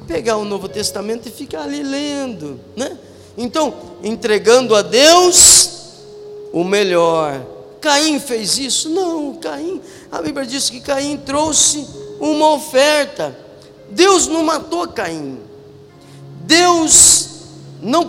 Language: Portuguese